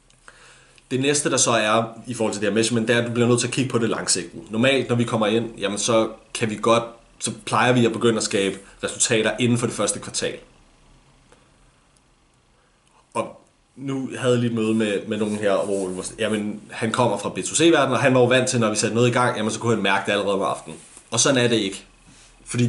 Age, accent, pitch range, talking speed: 30-49, native, 110-120 Hz, 235 wpm